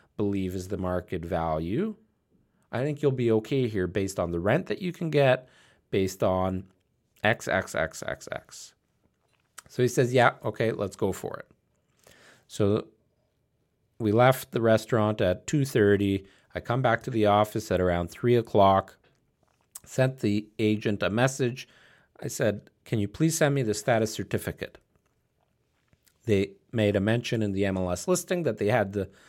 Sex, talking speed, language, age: male, 155 wpm, English, 40-59